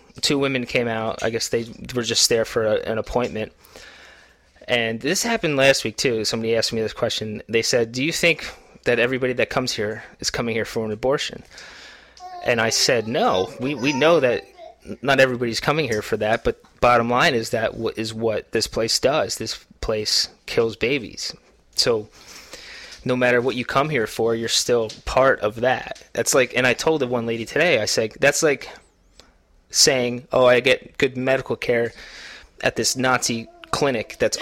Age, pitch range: 20-39, 115-135 Hz